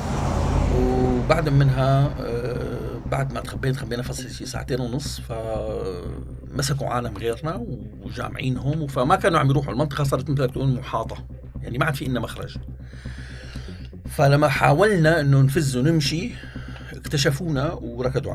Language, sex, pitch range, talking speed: Arabic, male, 110-140 Hz, 120 wpm